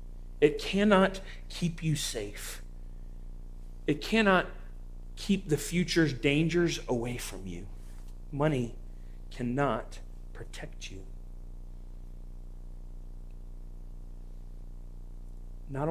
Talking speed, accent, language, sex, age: 70 wpm, American, English, male, 40-59